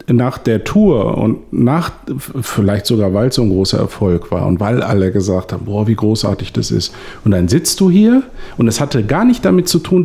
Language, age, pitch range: German, 50-69, 105-140 Hz